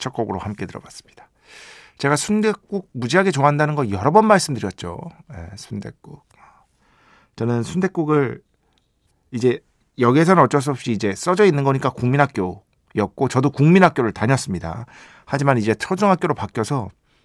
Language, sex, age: Korean, male, 50-69